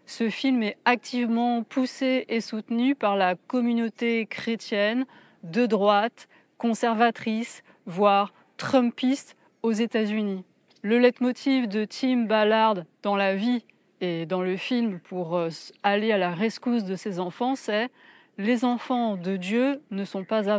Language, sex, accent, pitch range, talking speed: French, female, French, 195-240 Hz, 145 wpm